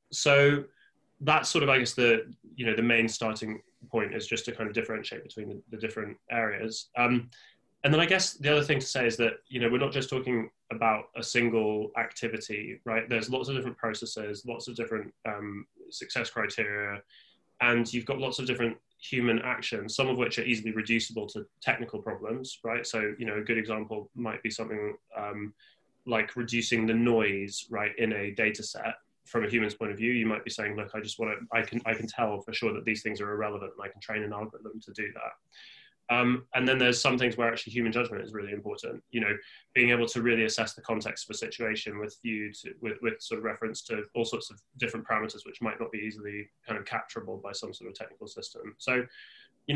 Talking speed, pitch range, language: 225 wpm, 110-120 Hz, English